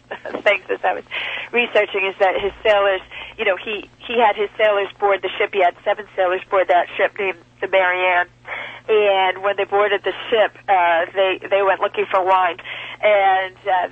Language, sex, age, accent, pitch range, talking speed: English, female, 40-59, American, 185-215 Hz, 190 wpm